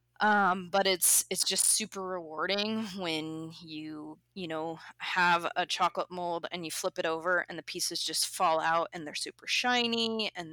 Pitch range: 160-200 Hz